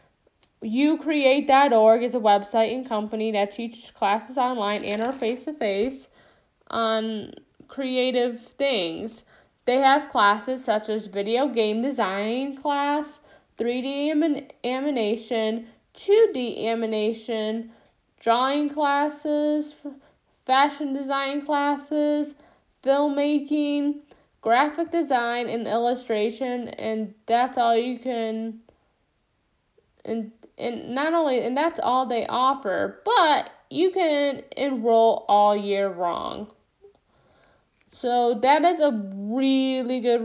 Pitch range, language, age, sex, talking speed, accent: 225-295 Hz, English, 10-29, female, 100 wpm, American